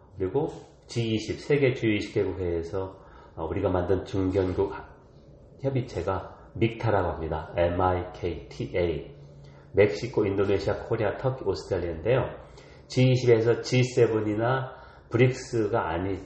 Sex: male